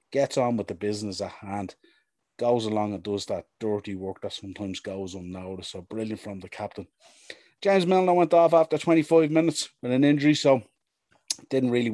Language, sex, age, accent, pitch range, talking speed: English, male, 30-49, Irish, 95-110 Hz, 180 wpm